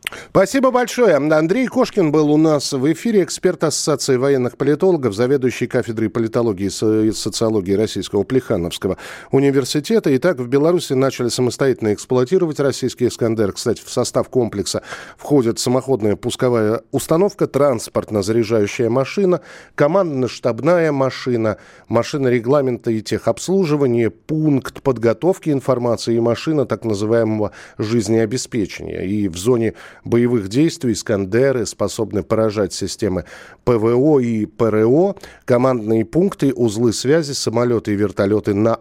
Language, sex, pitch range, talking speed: Russian, male, 110-145 Hz, 115 wpm